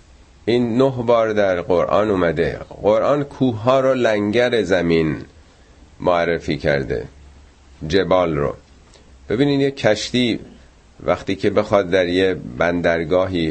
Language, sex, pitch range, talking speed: Persian, male, 85-120 Hz, 110 wpm